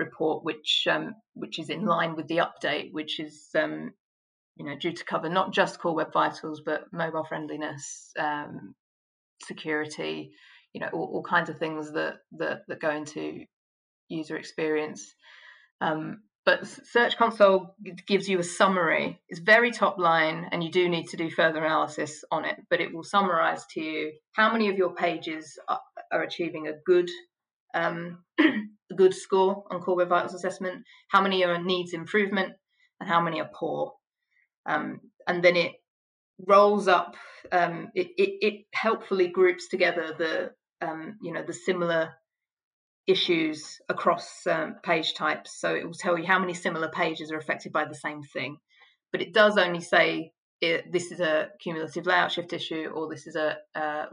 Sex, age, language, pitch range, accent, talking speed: female, 30-49, English, 160-195 Hz, British, 170 wpm